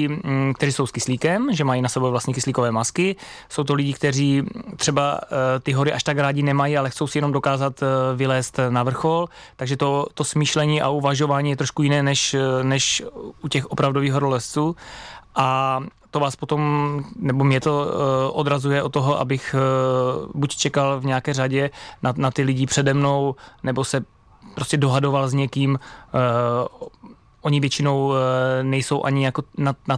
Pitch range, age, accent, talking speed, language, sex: 130-145 Hz, 20-39, native, 160 wpm, Czech, male